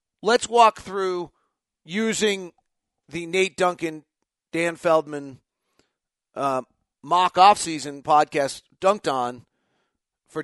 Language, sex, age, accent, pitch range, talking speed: English, male, 40-59, American, 145-190 Hz, 90 wpm